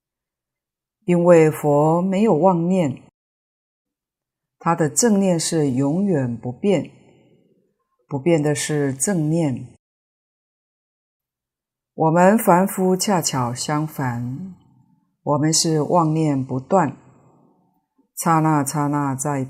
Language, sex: Chinese, female